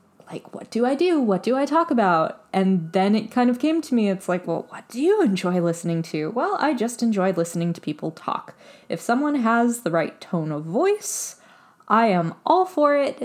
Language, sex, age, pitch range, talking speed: English, female, 20-39, 180-250 Hz, 215 wpm